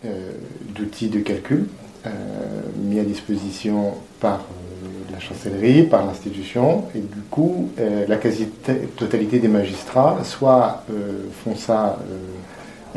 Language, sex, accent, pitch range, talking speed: French, male, French, 105-120 Hz, 120 wpm